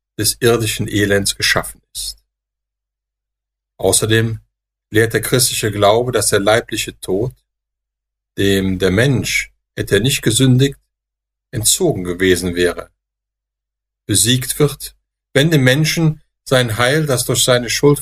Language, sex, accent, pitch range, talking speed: German, male, German, 100-125 Hz, 115 wpm